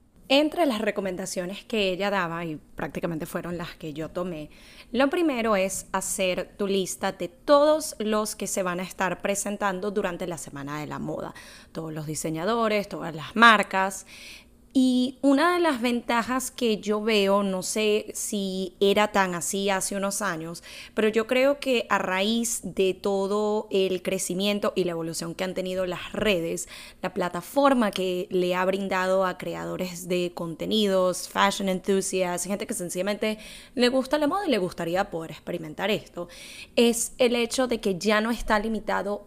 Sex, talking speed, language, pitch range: female, 165 wpm, Spanish, 180-220 Hz